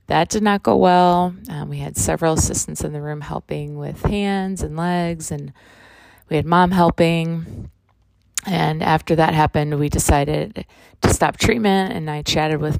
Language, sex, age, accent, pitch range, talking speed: English, female, 20-39, American, 105-160 Hz, 170 wpm